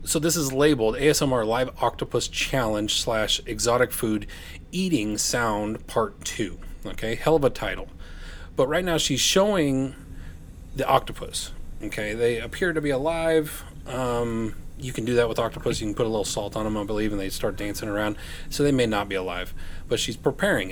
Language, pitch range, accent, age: English, 85-135 Hz, American, 30-49